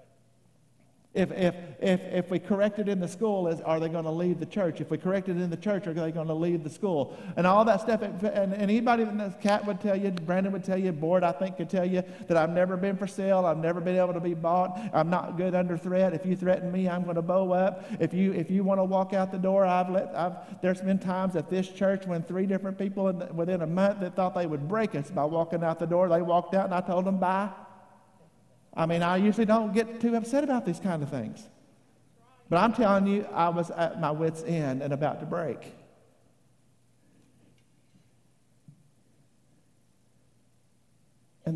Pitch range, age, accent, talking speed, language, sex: 150-190 Hz, 50-69, American, 225 wpm, English, male